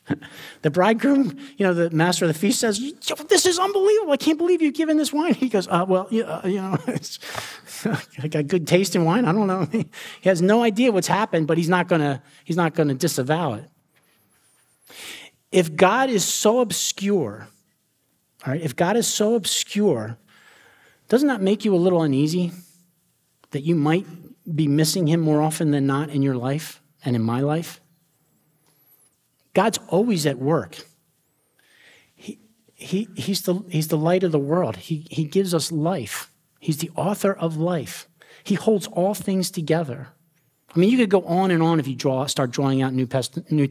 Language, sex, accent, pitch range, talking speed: English, male, American, 145-195 Hz, 180 wpm